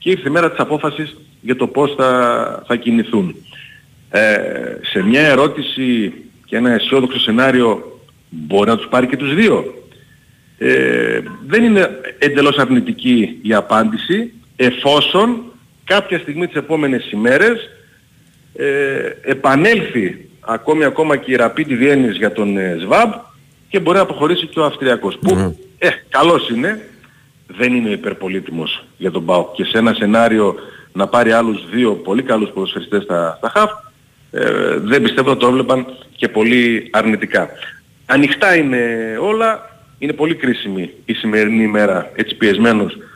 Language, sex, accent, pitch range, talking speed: Greek, male, native, 115-155 Hz, 140 wpm